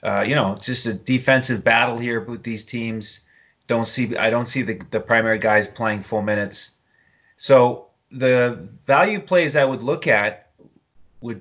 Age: 30-49